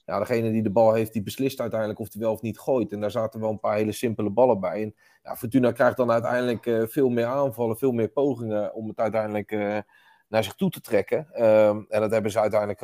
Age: 30-49